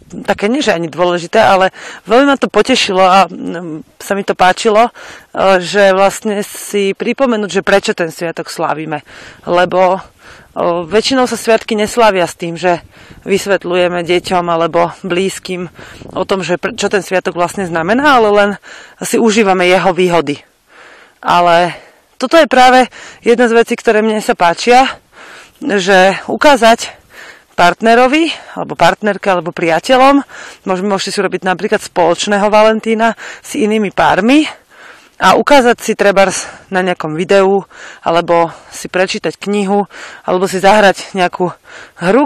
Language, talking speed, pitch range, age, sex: Slovak, 135 wpm, 180-225 Hz, 30-49, female